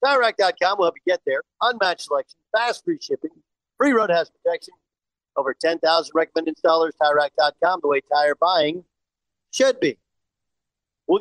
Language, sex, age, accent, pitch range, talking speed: English, male, 50-69, American, 145-200 Hz, 140 wpm